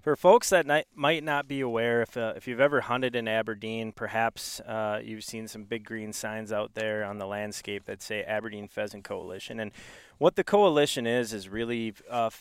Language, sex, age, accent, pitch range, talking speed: English, male, 20-39, American, 105-120 Hz, 200 wpm